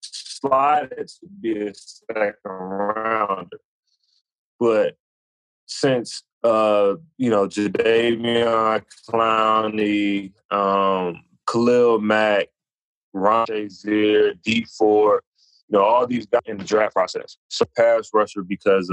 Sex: male